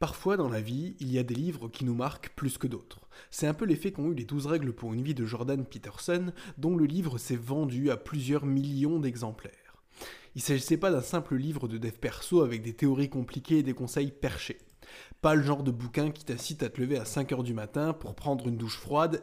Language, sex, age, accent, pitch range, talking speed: French, male, 20-39, French, 125-160 Hz, 235 wpm